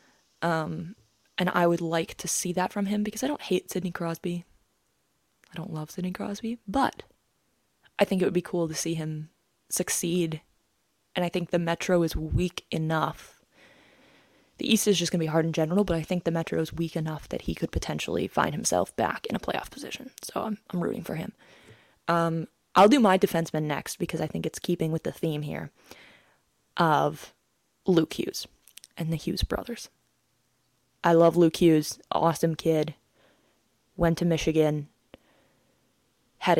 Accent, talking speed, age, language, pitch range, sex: American, 175 wpm, 20-39, English, 160-180 Hz, female